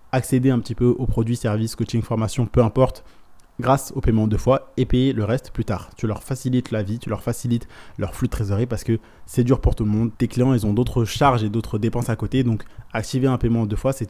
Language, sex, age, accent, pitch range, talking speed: French, male, 20-39, French, 105-125 Hz, 255 wpm